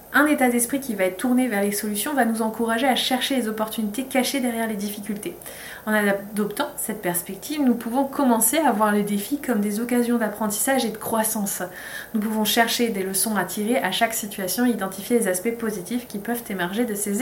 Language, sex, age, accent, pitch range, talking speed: French, female, 20-39, French, 210-270 Hz, 200 wpm